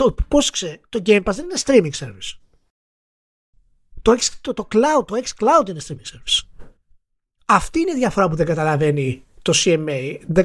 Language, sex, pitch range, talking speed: Greek, male, 135-205 Hz, 170 wpm